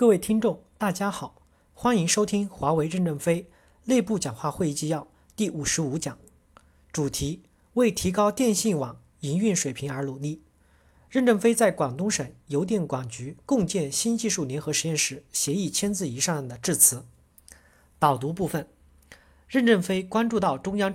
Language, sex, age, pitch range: Chinese, male, 40-59, 130-195 Hz